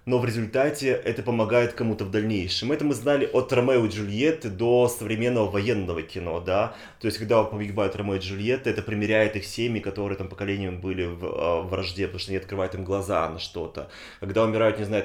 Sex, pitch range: male, 100-120 Hz